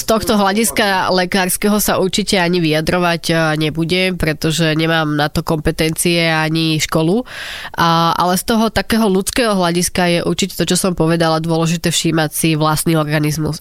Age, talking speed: 20-39, 145 wpm